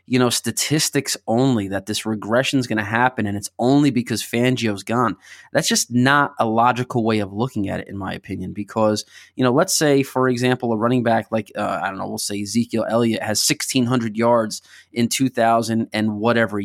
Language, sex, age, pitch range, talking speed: English, male, 20-39, 110-135 Hz, 200 wpm